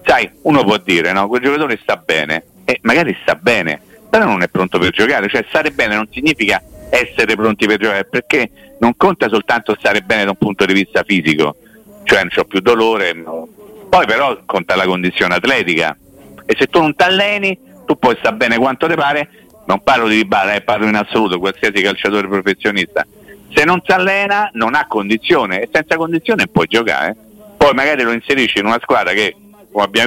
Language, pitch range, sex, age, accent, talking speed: Italian, 105-170 Hz, male, 50-69, native, 200 wpm